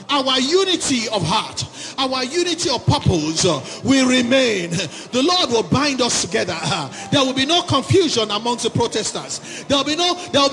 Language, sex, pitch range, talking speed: English, male, 245-325 Hz, 160 wpm